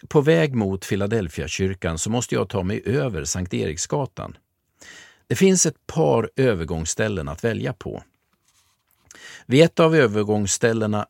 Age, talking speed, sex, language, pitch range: 50-69, 135 wpm, male, Swedish, 95-140 Hz